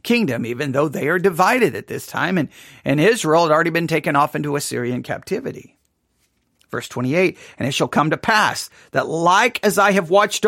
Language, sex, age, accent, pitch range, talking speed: English, male, 40-59, American, 160-210 Hz, 195 wpm